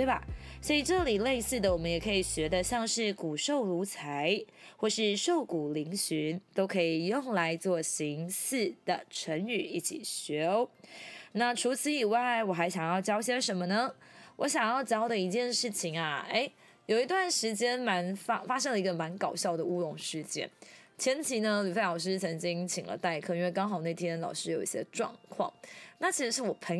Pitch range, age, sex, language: 180-295 Hz, 20-39, female, Chinese